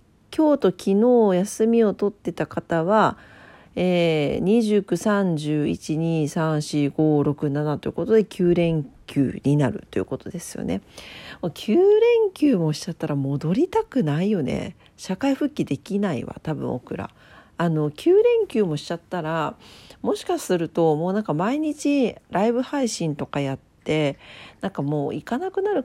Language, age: Japanese, 40-59